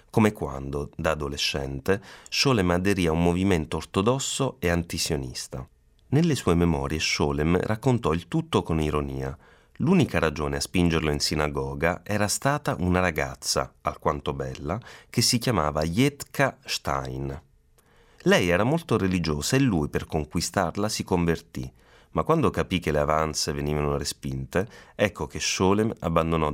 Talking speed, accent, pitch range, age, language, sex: 135 wpm, native, 75-105 Hz, 30-49, Italian, male